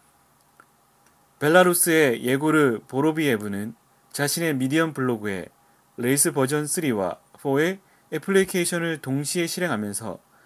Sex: male